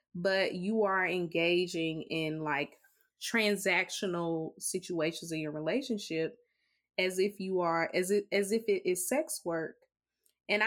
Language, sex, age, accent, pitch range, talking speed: English, female, 20-39, American, 165-205 Hz, 135 wpm